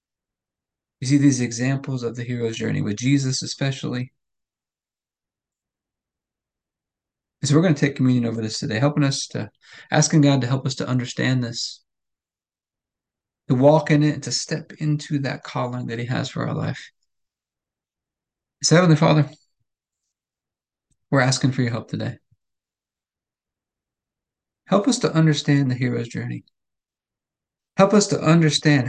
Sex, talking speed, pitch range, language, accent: male, 135 wpm, 125-150 Hz, English, American